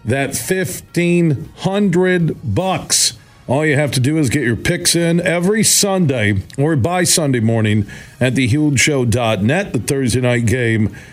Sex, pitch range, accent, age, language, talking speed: male, 115-140 Hz, American, 50-69, English, 135 wpm